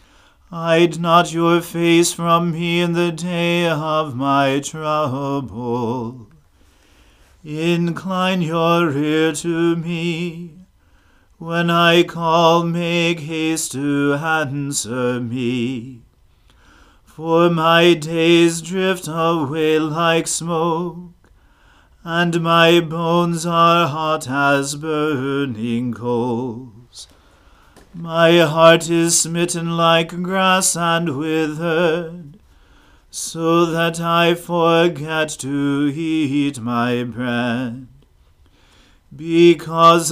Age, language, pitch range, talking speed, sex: 40-59, English, 135-170 Hz, 85 wpm, male